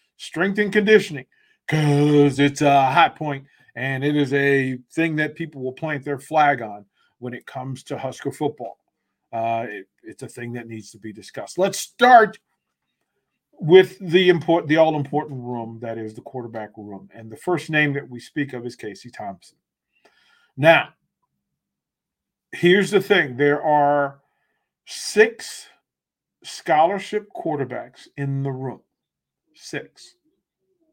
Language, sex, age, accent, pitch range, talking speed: English, male, 40-59, American, 130-170 Hz, 140 wpm